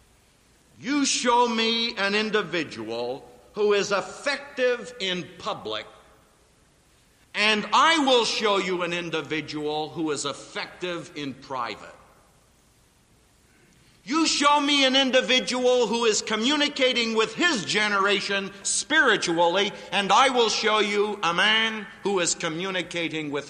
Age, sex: 50-69, male